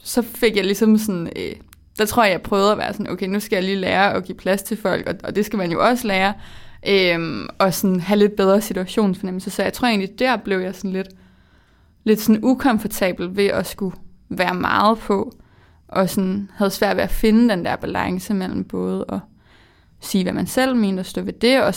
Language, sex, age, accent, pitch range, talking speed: Danish, female, 20-39, native, 185-215 Hz, 225 wpm